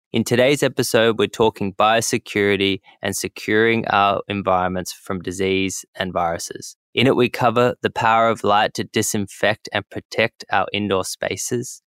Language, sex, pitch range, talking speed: English, male, 100-115 Hz, 145 wpm